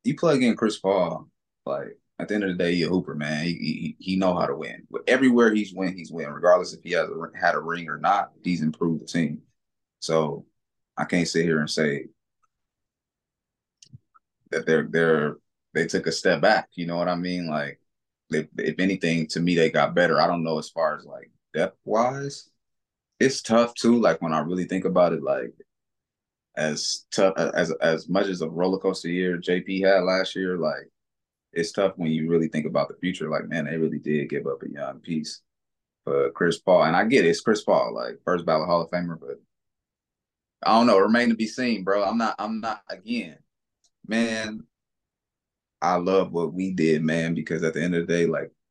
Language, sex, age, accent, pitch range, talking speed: English, male, 20-39, American, 80-95 Hz, 215 wpm